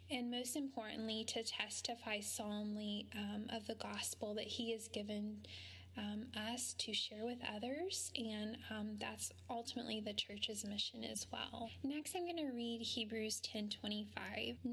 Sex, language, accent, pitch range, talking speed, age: female, English, American, 210-245 Hz, 145 wpm, 10-29